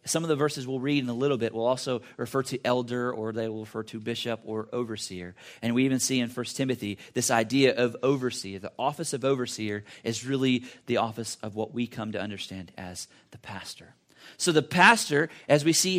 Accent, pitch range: American, 125-165 Hz